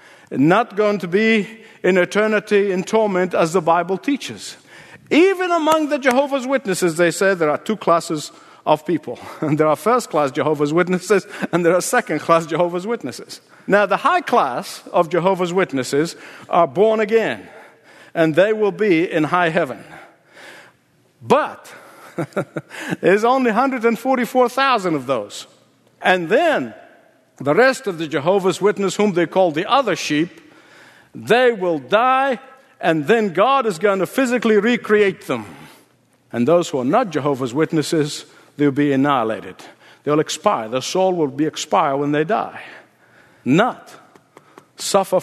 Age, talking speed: 50-69, 145 wpm